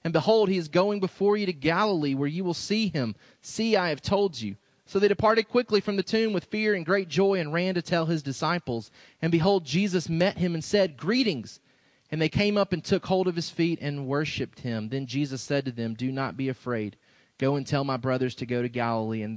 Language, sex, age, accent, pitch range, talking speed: English, male, 30-49, American, 125-160 Hz, 240 wpm